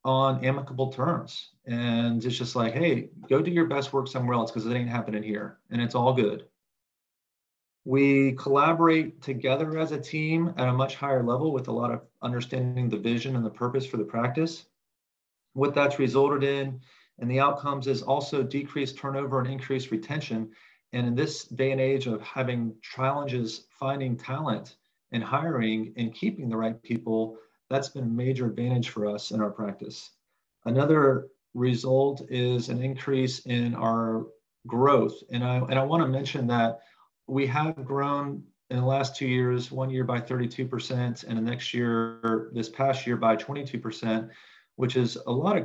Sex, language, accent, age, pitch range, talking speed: male, English, American, 40-59, 120-140 Hz, 175 wpm